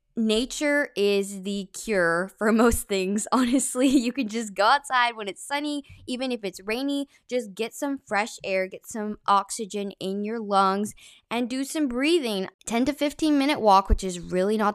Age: 10-29